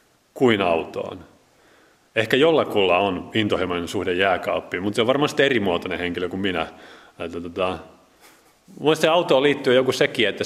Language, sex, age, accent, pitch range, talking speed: Finnish, male, 30-49, native, 90-115 Hz, 140 wpm